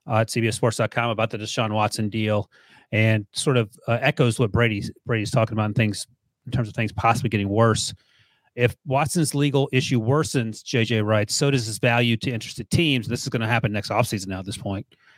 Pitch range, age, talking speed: 120-140 Hz, 30-49, 205 wpm